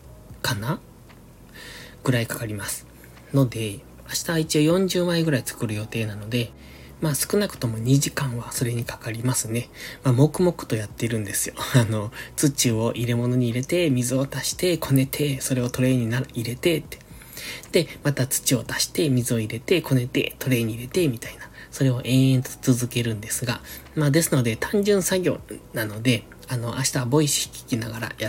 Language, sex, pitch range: Japanese, male, 115-145 Hz